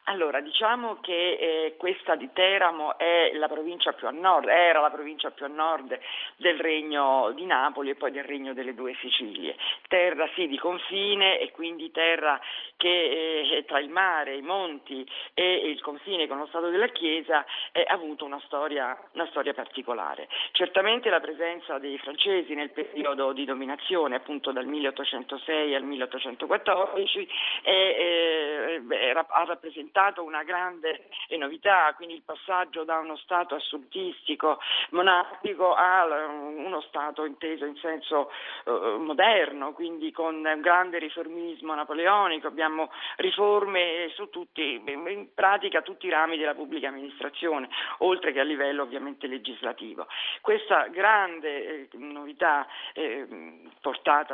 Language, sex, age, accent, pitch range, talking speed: Italian, female, 40-59, native, 145-180 Hz, 135 wpm